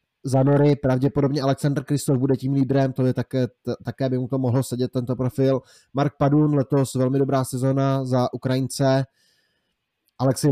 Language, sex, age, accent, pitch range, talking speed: Czech, male, 20-39, native, 125-135 Hz, 165 wpm